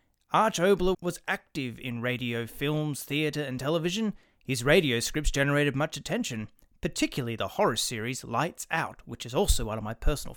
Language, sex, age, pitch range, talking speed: English, male, 30-49, 125-175 Hz, 170 wpm